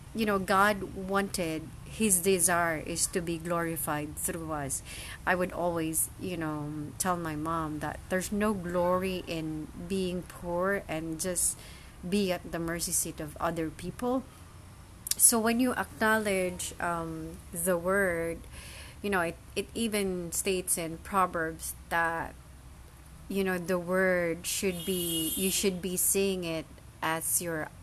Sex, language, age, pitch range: female, English, 30-49, 165-195 Hz